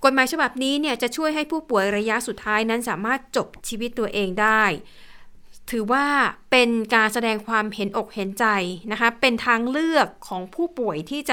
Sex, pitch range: female, 205-245 Hz